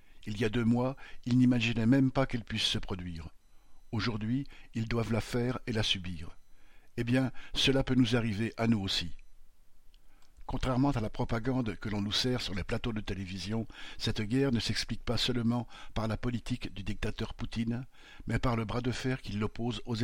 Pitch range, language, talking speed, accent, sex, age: 105-125 Hz, French, 190 wpm, French, male, 60-79